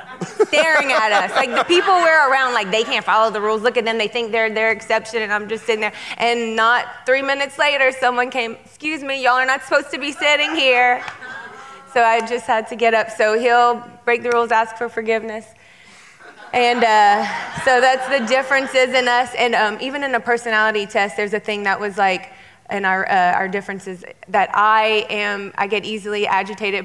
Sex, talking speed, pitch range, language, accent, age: female, 205 wpm, 210-260 Hz, English, American, 20-39